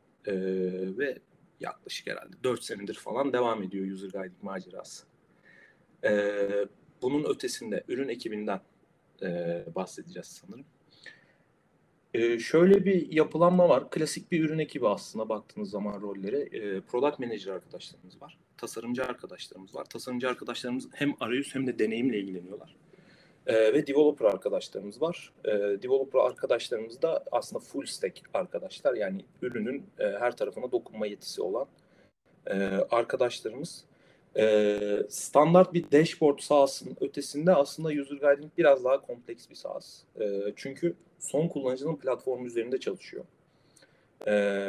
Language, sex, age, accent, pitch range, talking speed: Turkish, male, 40-59, native, 105-175 Hz, 125 wpm